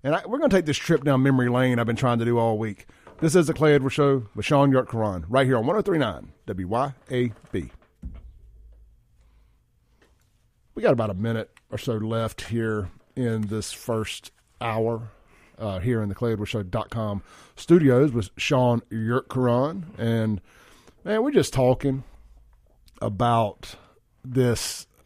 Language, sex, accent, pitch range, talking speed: English, male, American, 115-170 Hz, 150 wpm